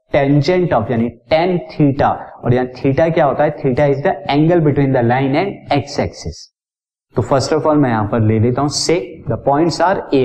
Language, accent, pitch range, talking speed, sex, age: Hindi, native, 120-160 Hz, 165 wpm, male, 50-69